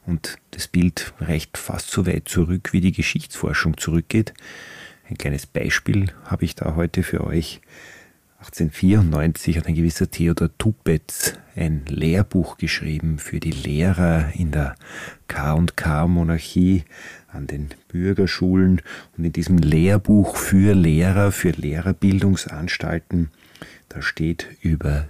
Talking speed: 125 wpm